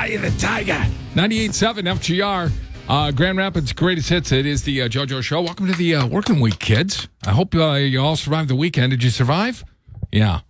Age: 50-69